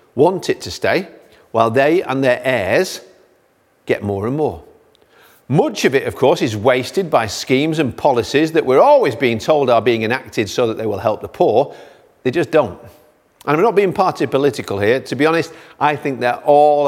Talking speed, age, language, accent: 200 wpm, 50-69, English, British